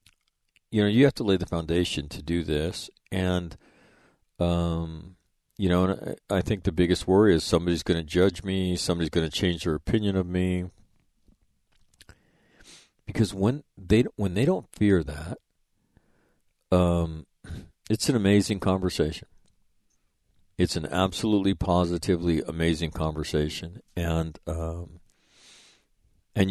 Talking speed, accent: 125 wpm, American